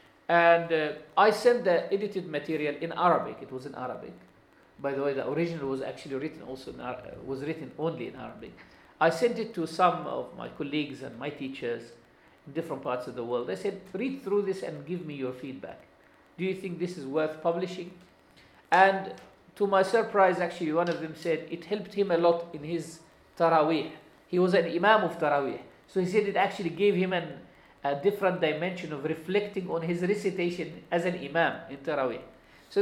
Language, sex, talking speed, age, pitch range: English, male, 195 wpm, 50-69, 145-180 Hz